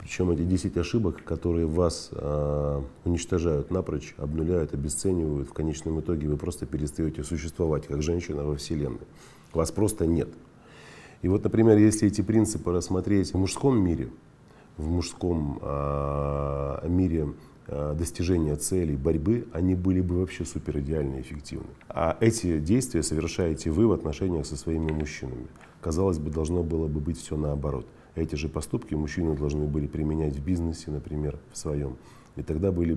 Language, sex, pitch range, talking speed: Russian, male, 75-90 Hz, 150 wpm